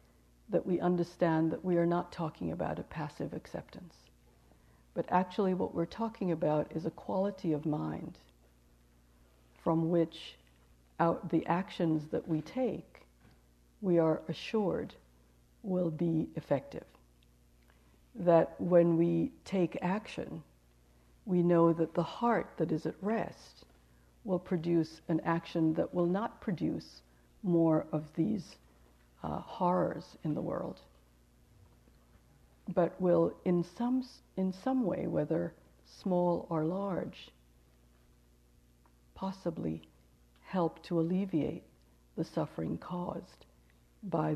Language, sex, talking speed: English, female, 115 wpm